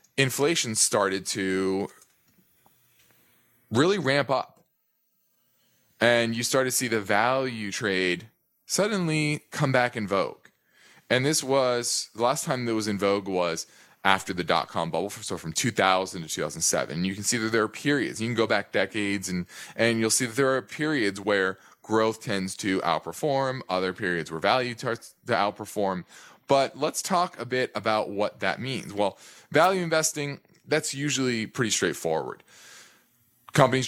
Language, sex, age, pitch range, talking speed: English, male, 20-39, 100-130 Hz, 165 wpm